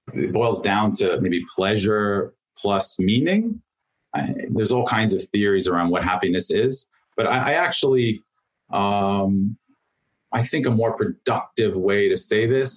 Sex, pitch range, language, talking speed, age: male, 100-125 Hz, English, 145 wpm, 30-49